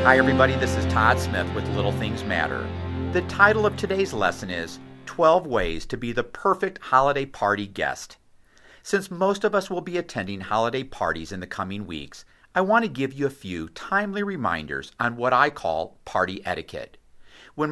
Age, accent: 50-69, American